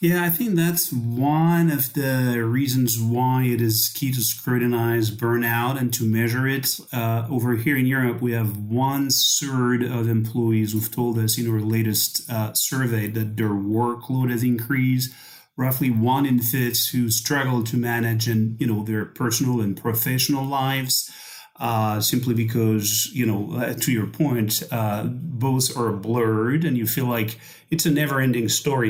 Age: 30-49